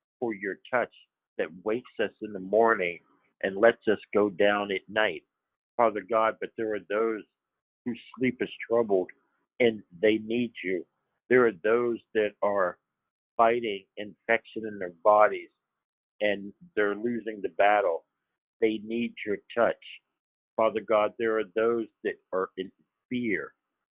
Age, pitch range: 60-79, 105-120 Hz